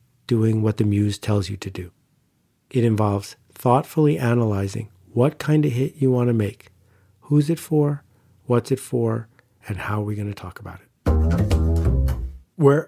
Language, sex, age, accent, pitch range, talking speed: English, male, 50-69, American, 105-135 Hz, 170 wpm